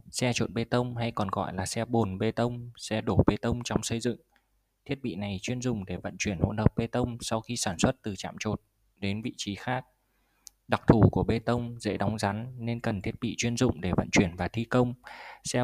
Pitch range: 100-120 Hz